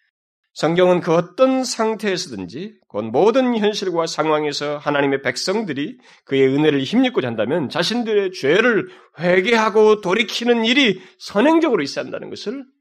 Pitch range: 145-245 Hz